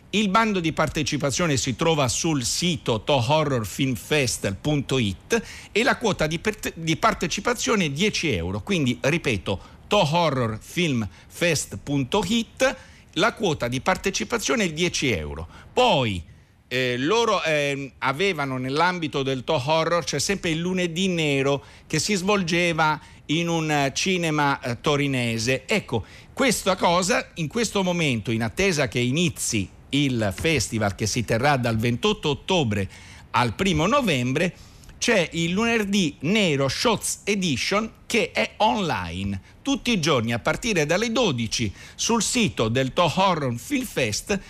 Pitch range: 125-185 Hz